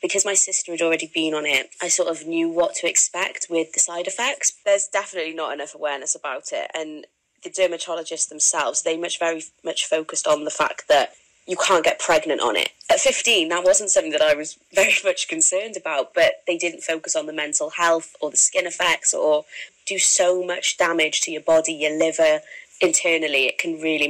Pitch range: 155-185 Hz